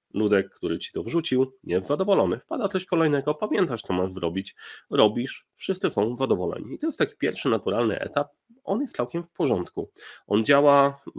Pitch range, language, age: 100-145 Hz, Polish, 30-49